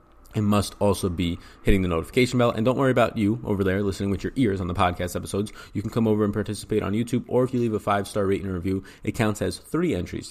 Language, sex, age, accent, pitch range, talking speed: English, male, 20-39, American, 90-110 Hz, 260 wpm